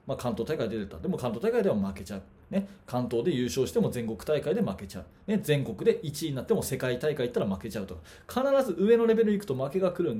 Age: 20-39